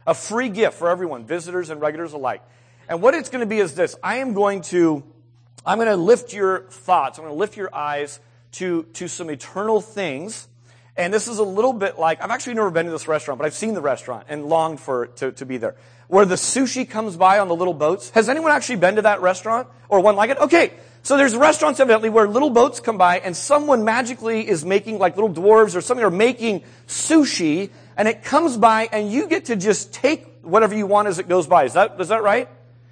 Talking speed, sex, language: 235 wpm, male, English